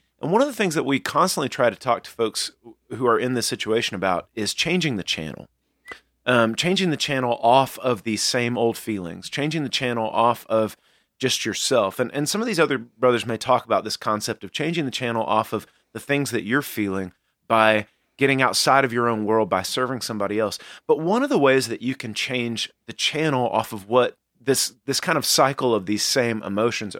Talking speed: 215 wpm